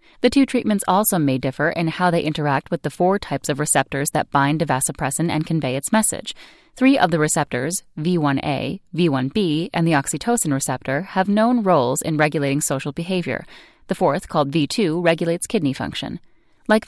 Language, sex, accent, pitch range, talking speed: English, female, American, 145-185 Hz, 175 wpm